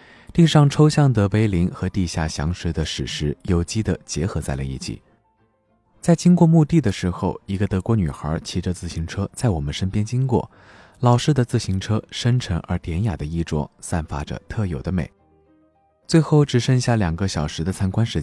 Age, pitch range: 20-39, 80-115 Hz